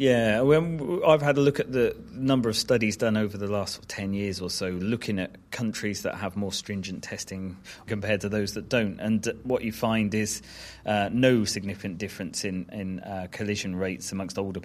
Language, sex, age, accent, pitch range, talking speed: English, male, 30-49, British, 95-110 Hz, 195 wpm